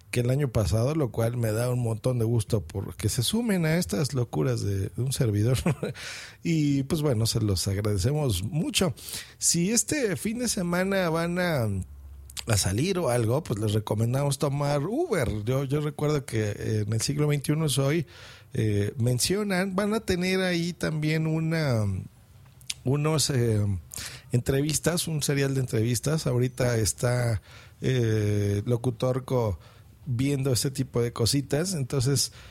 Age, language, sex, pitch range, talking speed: 40-59, Spanish, male, 115-155 Hz, 145 wpm